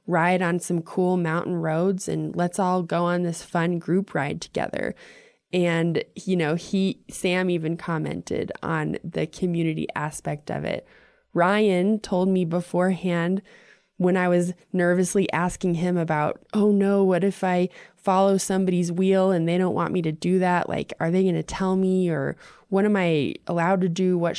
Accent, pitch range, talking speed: American, 170-195 Hz, 175 wpm